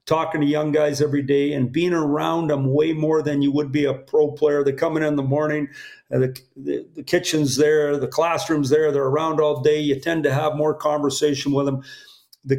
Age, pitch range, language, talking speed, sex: 50-69, 145-165 Hz, English, 225 wpm, male